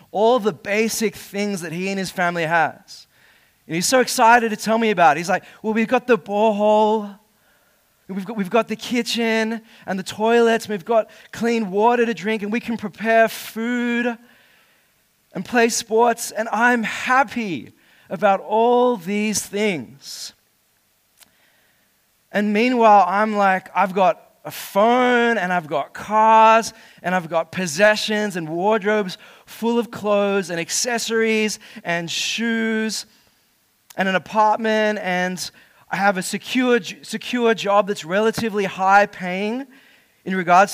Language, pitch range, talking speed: English, 195-230 Hz, 145 wpm